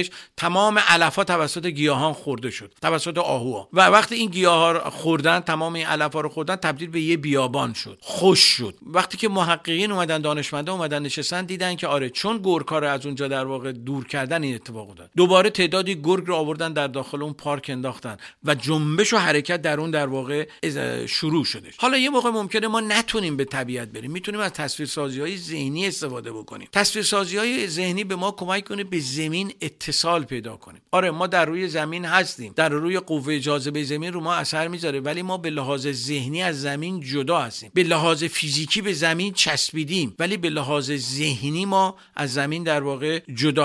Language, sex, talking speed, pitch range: Persian, male, 185 wpm, 140-185 Hz